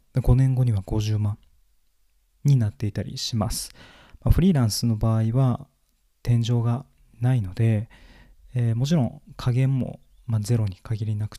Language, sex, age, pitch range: Japanese, male, 20-39, 110-135 Hz